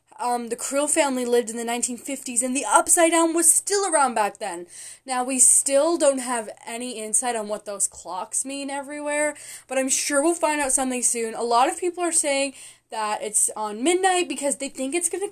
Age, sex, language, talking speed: 10-29, female, English, 210 wpm